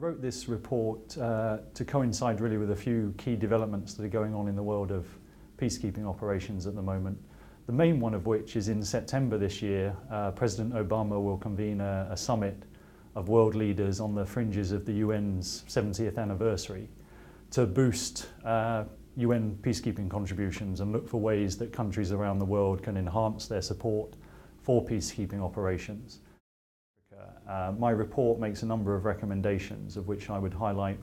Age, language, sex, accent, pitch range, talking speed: 30-49, English, male, British, 100-115 Hz, 175 wpm